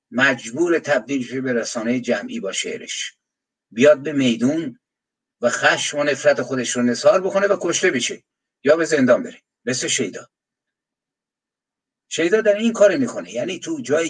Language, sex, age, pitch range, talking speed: Persian, male, 60-79, 120-195 Hz, 150 wpm